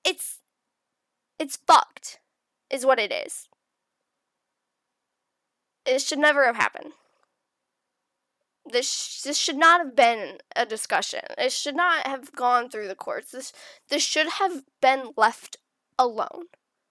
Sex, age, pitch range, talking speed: female, 10-29, 255-335 Hz, 125 wpm